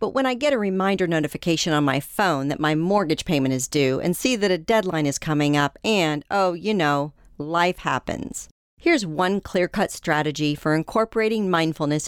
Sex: female